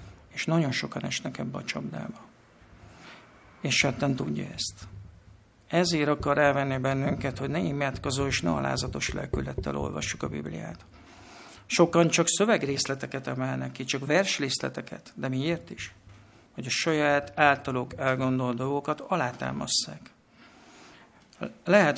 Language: Hungarian